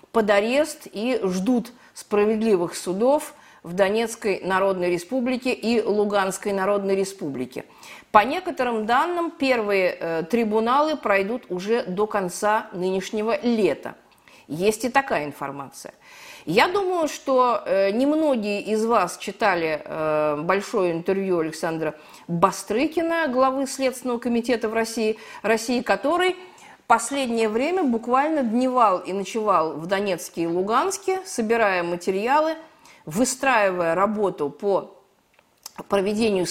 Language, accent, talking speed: Russian, native, 110 wpm